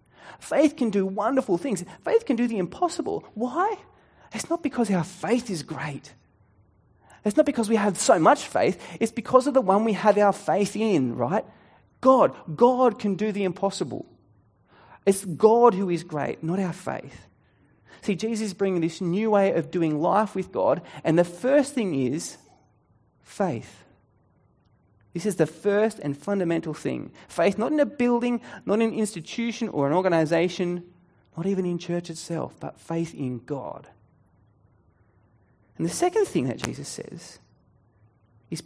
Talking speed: 165 wpm